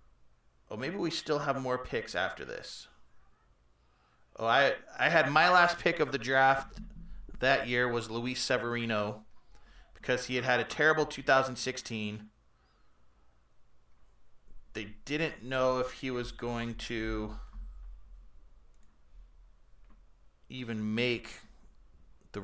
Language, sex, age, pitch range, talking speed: English, male, 30-49, 100-155 Hz, 110 wpm